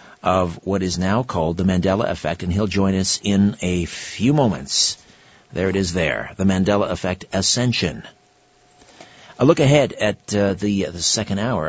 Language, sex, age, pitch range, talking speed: English, male, 50-69, 90-110 Hz, 170 wpm